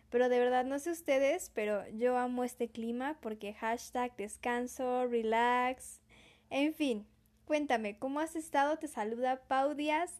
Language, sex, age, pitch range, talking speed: Spanish, female, 10-29, 225-270 Hz, 145 wpm